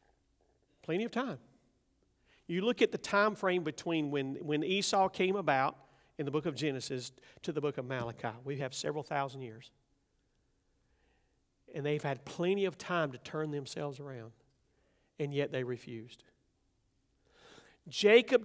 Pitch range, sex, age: 150-215 Hz, male, 50-69